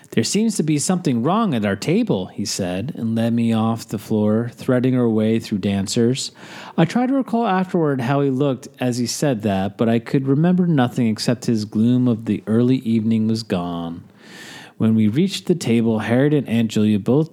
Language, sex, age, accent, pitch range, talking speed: English, male, 30-49, American, 115-180 Hz, 200 wpm